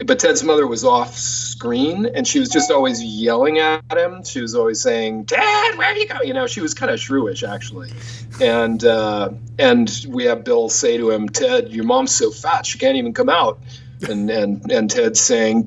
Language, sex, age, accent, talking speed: English, male, 40-59, American, 210 wpm